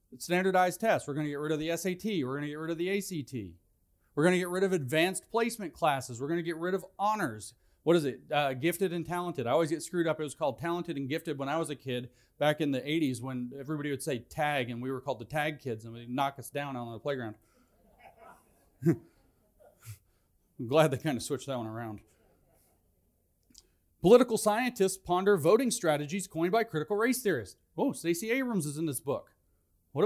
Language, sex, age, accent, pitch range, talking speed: English, male, 40-59, American, 120-180 Hz, 215 wpm